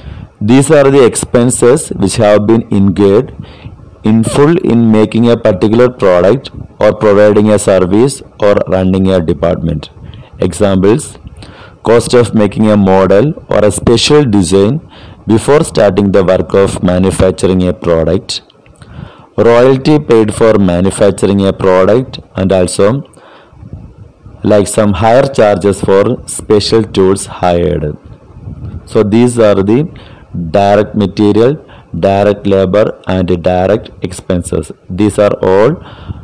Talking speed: 120 wpm